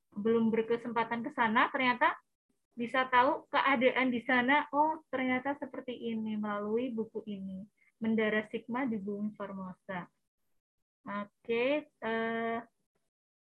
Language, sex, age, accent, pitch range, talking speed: Indonesian, female, 20-39, native, 215-255 Hz, 105 wpm